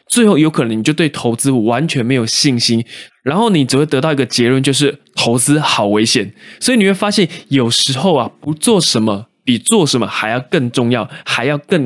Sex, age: male, 20-39